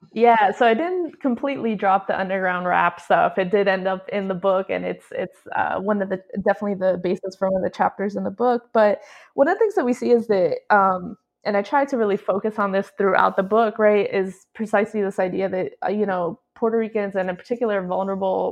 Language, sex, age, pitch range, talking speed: English, female, 20-39, 185-220 Hz, 230 wpm